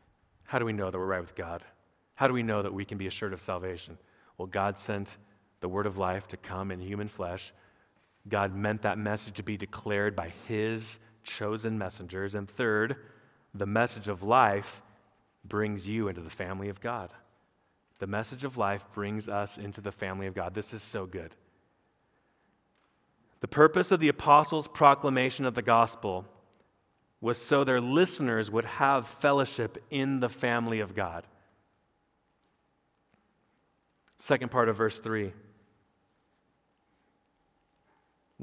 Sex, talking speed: male, 150 wpm